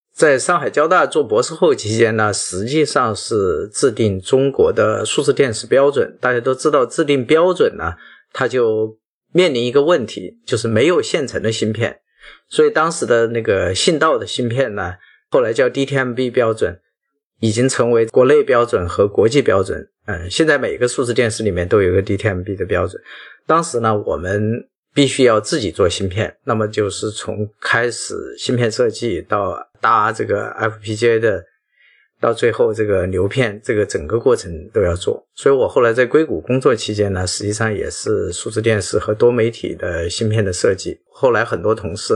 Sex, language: male, Chinese